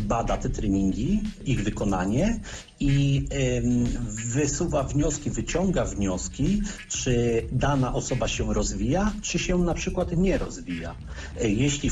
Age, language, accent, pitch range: 40-59, Polish, native, 115-145 Hz